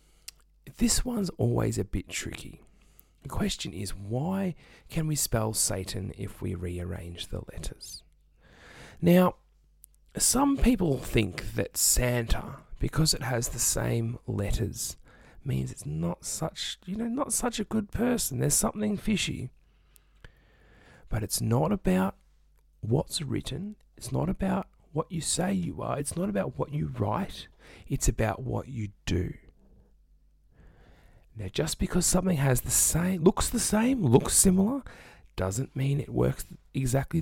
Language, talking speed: English, 140 wpm